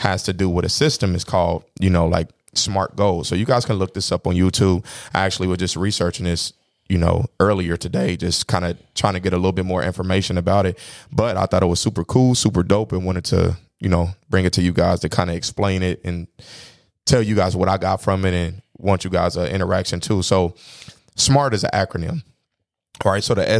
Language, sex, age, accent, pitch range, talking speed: English, male, 20-39, American, 90-110 Hz, 240 wpm